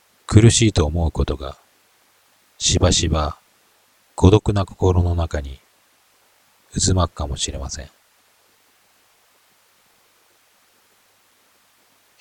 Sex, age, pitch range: male, 40-59, 80-95 Hz